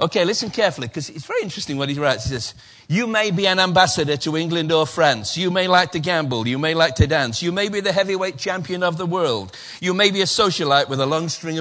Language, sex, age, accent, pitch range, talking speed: English, male, 60-79, British, 155-210 Hz, 255 wpm